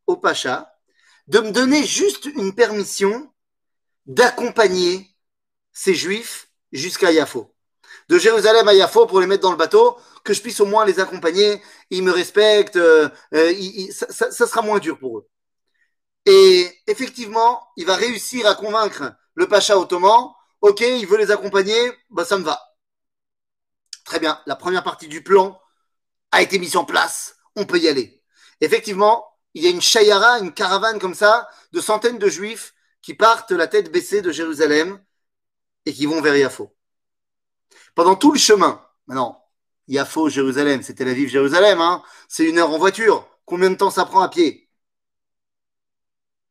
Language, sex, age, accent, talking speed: French, male, 30-49, French, 160 wpm